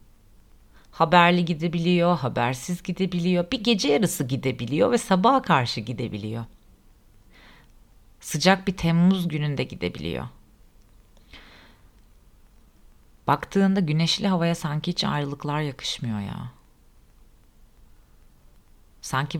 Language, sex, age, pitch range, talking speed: Turkish, female, 40-59, 110-170 Hz, 80 wpm